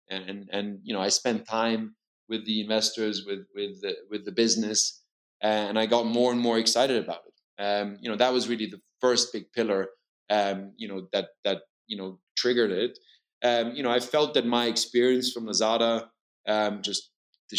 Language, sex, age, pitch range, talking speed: English, male, 20-39, 105-120 Hz, 200 wpm